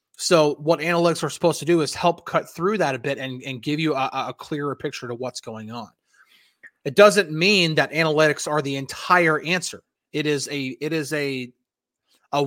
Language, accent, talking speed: English, American, 190 wpm